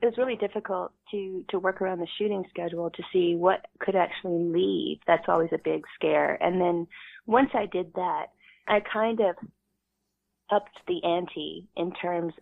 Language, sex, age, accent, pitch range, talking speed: English, female, 30-49, American, 170-190 Hz, 175 wpm